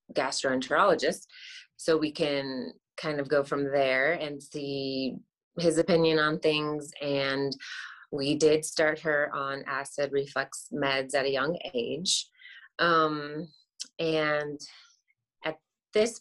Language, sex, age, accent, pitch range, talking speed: English, female, 30-49, American, 145-175 Hz, 120 wpm